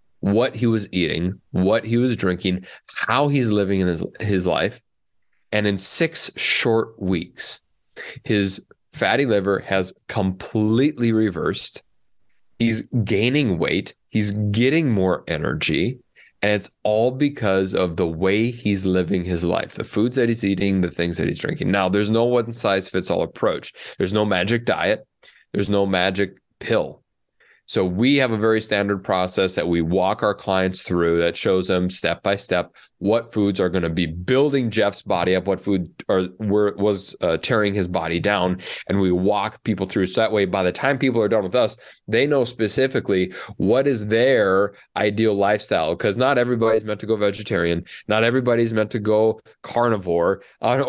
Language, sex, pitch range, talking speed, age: English, male, 95-115 Hz, 170 wpm, 30-49